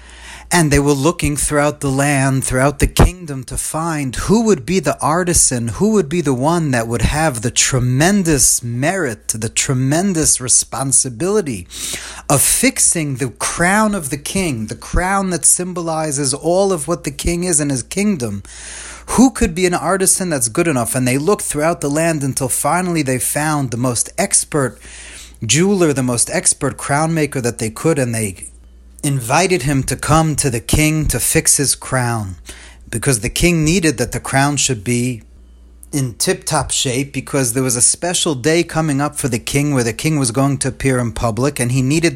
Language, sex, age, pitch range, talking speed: English, male, 30-49, 125-165 Hz, 185 wpm